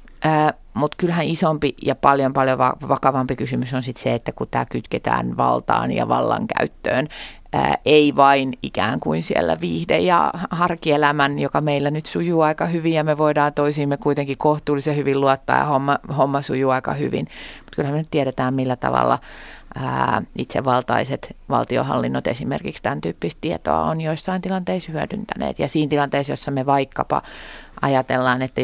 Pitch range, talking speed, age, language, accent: 125-150 Hz, 155 wpm, 30-49, Finnish, native